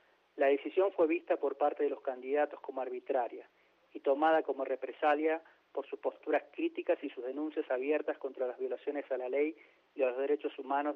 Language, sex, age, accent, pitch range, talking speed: Spanish, male, 30-49, Argentinian, 140-170 Hz, 185 wpm